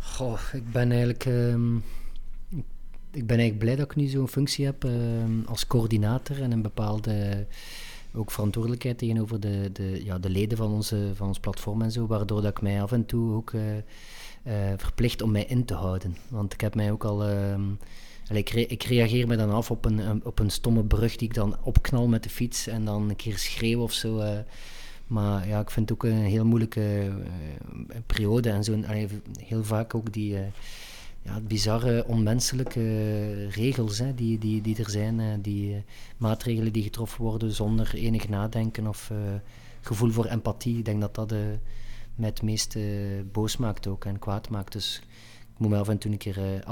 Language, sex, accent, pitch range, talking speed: Dutch, male, Dutch, 100-115 Hz, 190 wpm